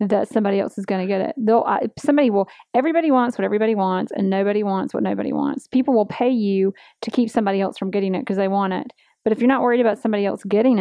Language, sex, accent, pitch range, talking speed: English, female, American, 200-240 Hz, 260 wpm